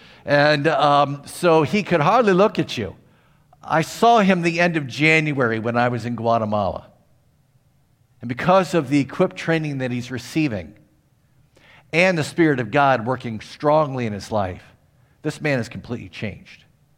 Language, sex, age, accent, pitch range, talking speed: English, male, 50-69, American, 130-180 Hz, 160 wpm